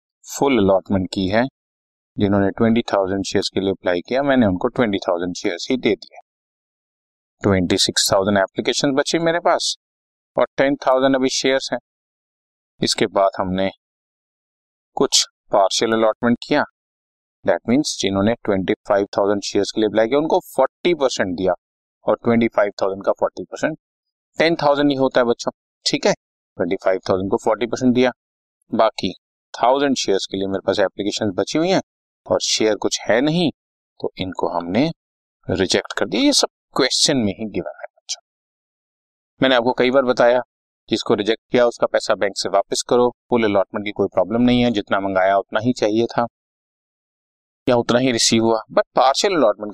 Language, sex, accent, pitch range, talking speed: Hindi, male, native, 95-125 Hz, 155 wpm